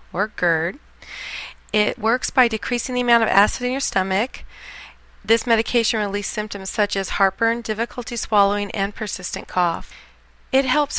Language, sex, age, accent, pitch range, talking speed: English, female, 40-59, American, 185-230 Hz, 145 wpm